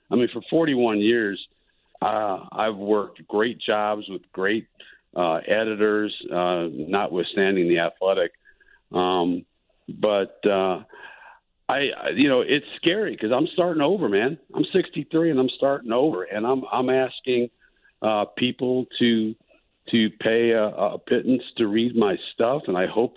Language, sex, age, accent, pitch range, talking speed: English, male, 50-69, American, 105-125 Hz, 150 wpm